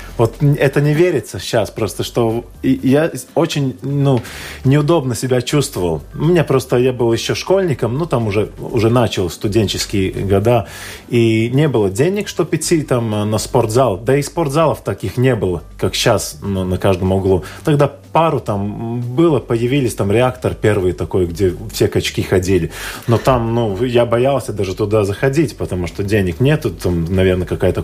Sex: male